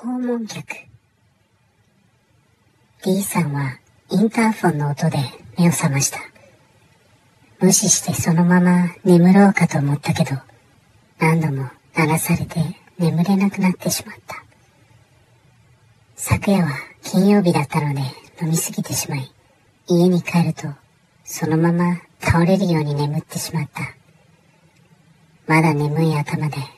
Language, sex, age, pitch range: Japanese, male, 40-59, 130-175 Hz